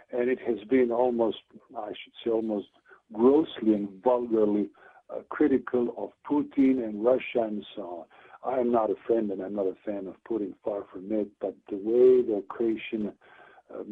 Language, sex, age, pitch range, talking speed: English, male, 50-69, 105-125 Hz, 175 wpm